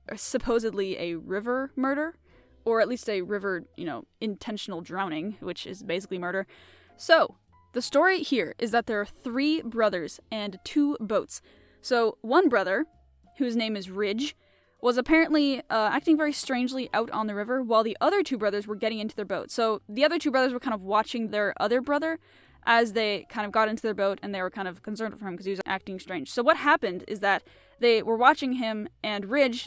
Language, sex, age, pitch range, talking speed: English, female, 10-29, 195-255 Hz, 205 wpm